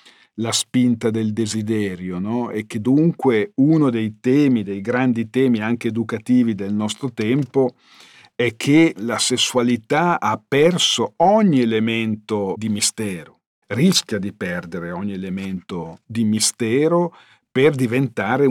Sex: male